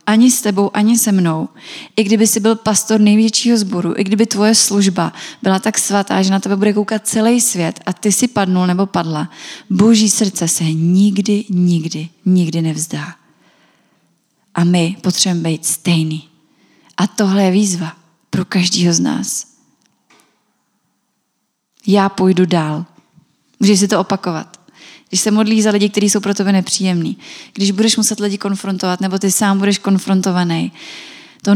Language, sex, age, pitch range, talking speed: Czech, female, 20-39, 180-210 Hz, 155 wpm